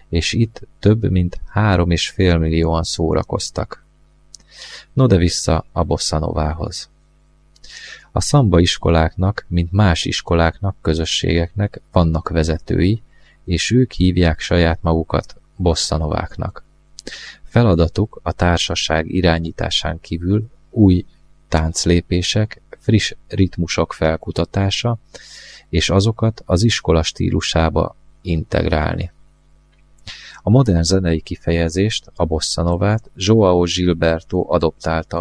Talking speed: 90 wpm